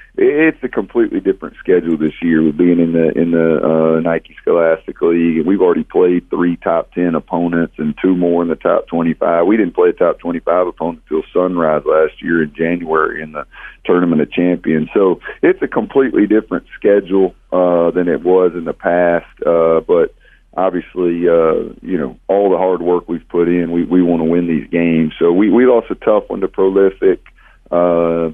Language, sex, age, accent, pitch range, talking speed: English, male, 40-59, American, 80-105 Hz, 195 wpm